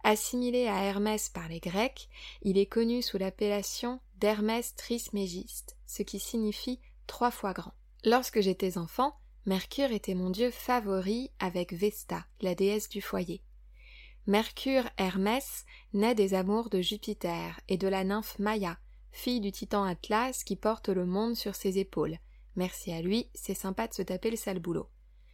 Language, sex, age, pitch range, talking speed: French, female, 20-39, 185-235 Hz, 160 wpm